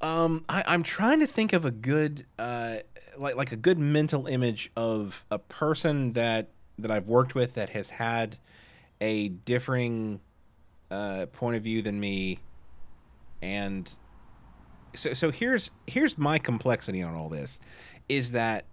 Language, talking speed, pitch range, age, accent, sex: English, 150 wpm, 100-145 Hz, 30-49, American, male